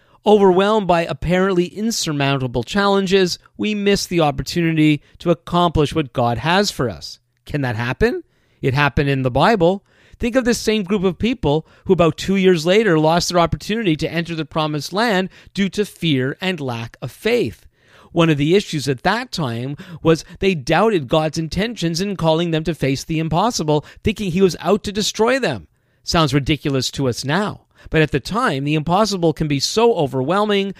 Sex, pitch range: male, 140-185 Hz